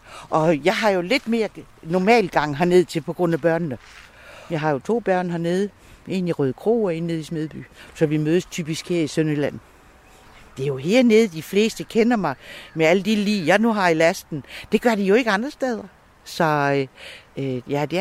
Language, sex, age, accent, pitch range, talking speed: Danish, female, 60-79, native, 140-190 Hz, 215 wpm